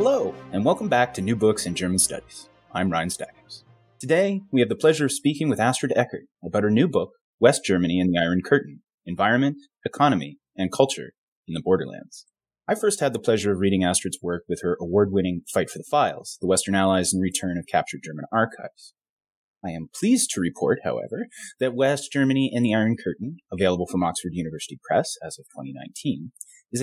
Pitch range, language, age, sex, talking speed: 90-135 Hz, English, 30-49, male, 195 wpm